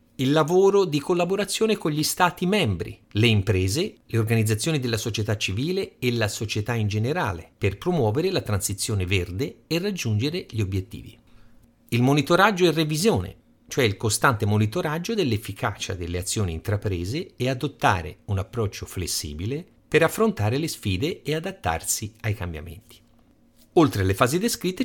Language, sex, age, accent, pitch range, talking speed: Italian, male, 50-69, native, 100-150 Hz, 140 wpm